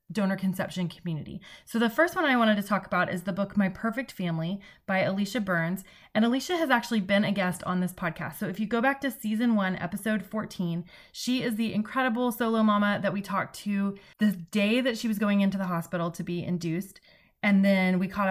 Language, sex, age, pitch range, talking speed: English, female, 20-39, 180-220 Hz, 220 wpm